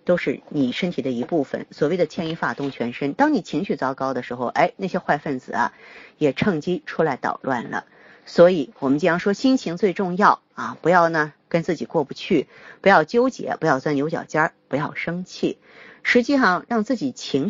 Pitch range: 140-205 Hz